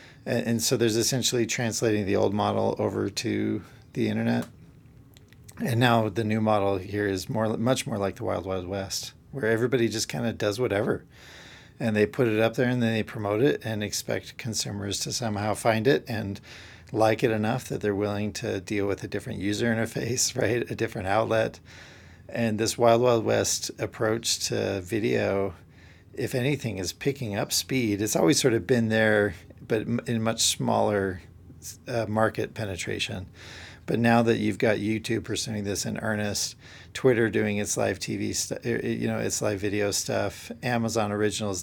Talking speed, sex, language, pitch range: 175 wpm, male, English, 100-115 Hz